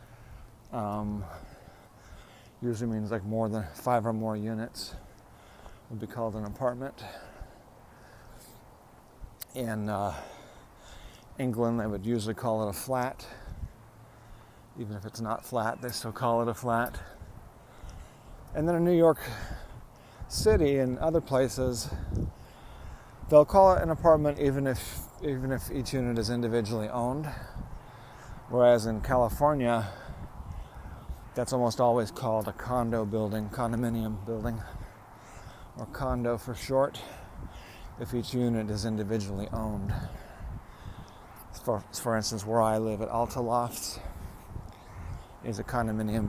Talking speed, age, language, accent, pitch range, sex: 120 wpm, 40-59, English, American, 110-125 Hz, male